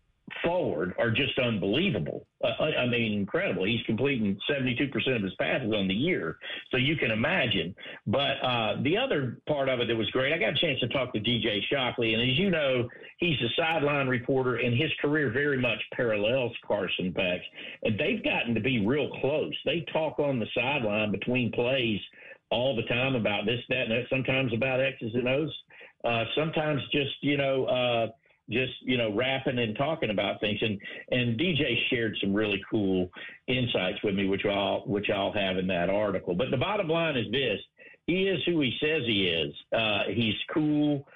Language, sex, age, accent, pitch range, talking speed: English, male, 50-69, American, 115-140 Hz, 190 wpm